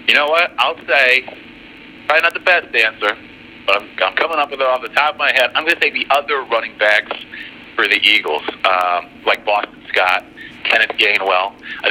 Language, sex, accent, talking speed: English, male, American, 205 wpm